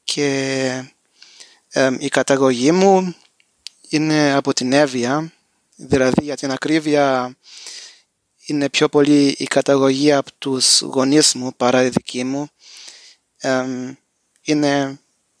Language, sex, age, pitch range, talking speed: Greek, male, 20-39, 135-160 Hz, 105 wpm